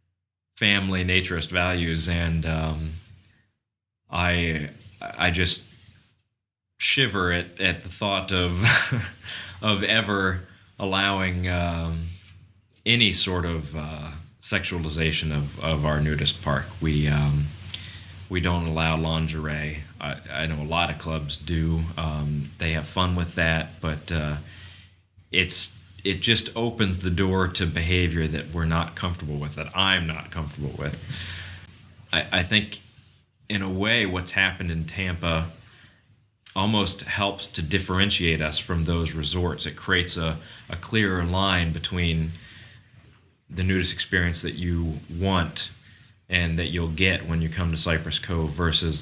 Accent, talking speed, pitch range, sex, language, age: American, 135 wpm, 80-100 Hz, male, English, 30-49